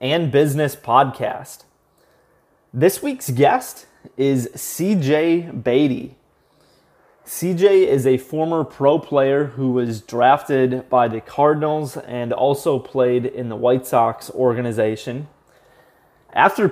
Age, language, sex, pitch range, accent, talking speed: 20-39, English, male, 130-155 Hz, American, 110 wpm